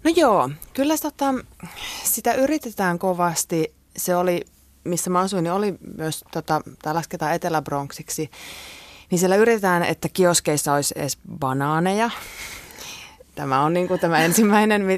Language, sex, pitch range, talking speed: Finnish, female, 140-180 Hz, 135 wpm